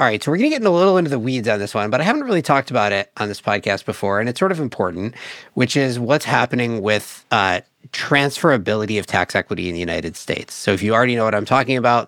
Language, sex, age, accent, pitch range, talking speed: English, male, 50-69, American, 100-130 Hz, 270 wpm